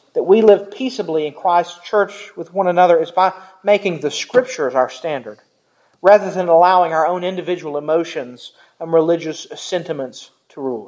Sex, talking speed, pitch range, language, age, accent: male, 160 wpm, 165-215 Hz, English, 40-59, American